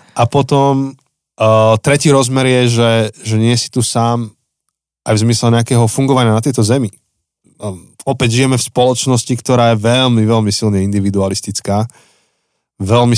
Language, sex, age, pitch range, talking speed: Slovak, male, 20-39, 100-125 Hz, 135 wpm